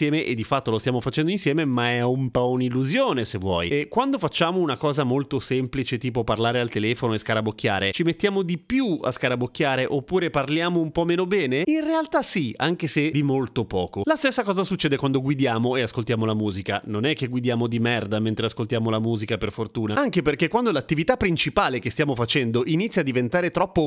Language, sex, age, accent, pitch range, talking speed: Italian, male, 30-49, native, 115-180 Hz, 205 wpm